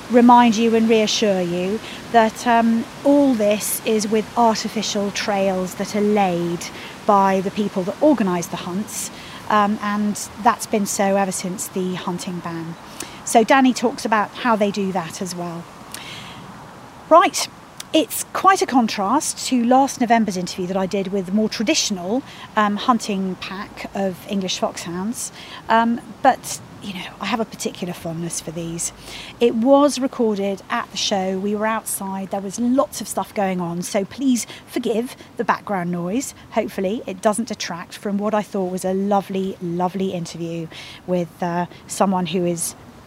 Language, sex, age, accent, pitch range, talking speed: English, female, 40-59, British, 185-225 Hz, 160 wpm